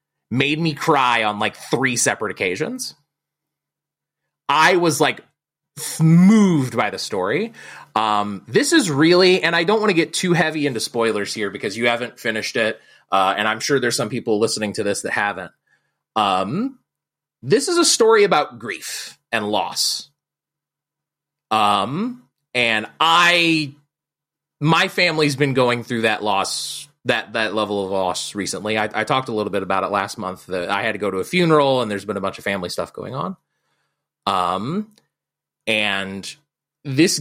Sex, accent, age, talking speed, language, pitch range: male, American, 30-49, 165 wpm, English, 110-155 Hz